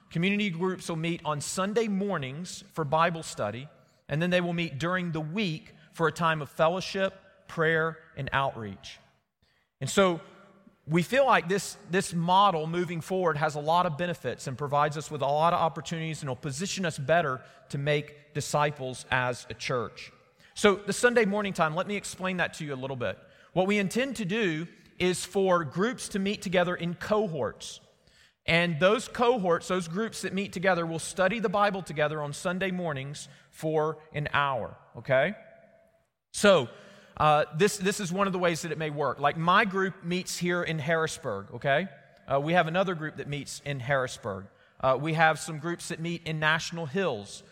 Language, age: English, 40-59